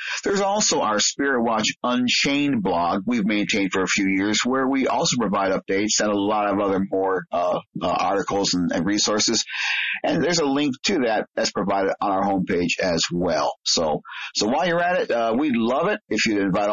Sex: male